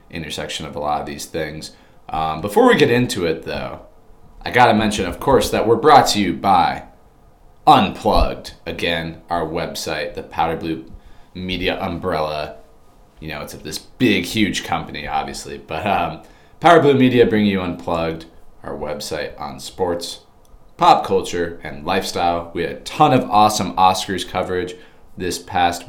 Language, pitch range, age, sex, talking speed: English, 80-95 Hz, 30-49, male, 160 wpm